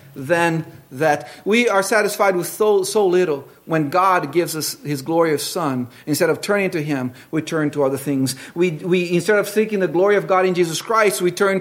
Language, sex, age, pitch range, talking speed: English, male, 40-59, 145-200 Hz, 205 wpm